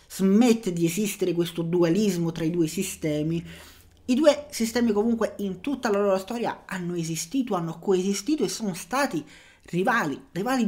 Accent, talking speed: native, 150 wpm